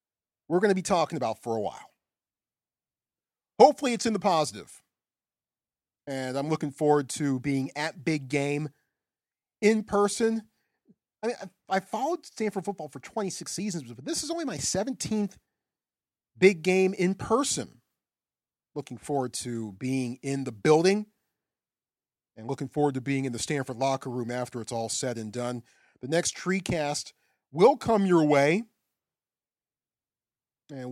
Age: 40-59